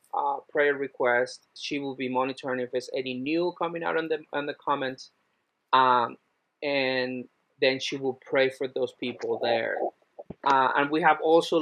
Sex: male